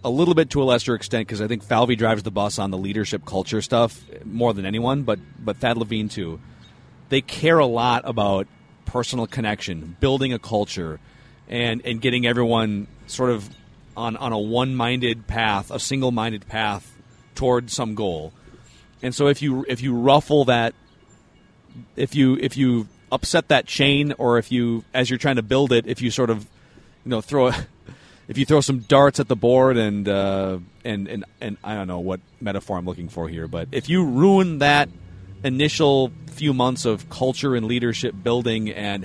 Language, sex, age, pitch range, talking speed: English, male, 40-59, 105-130 Hz, 190 wpm